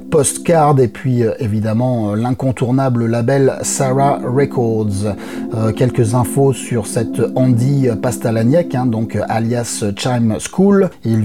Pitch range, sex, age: 110-140 Hz, male, 30-49